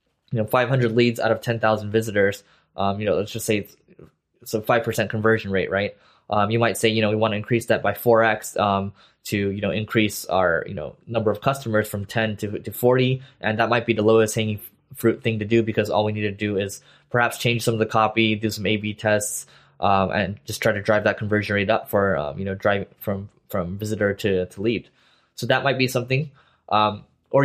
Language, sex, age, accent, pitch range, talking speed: English, male, 10-29, American, 105-120 Hz, 230 wpm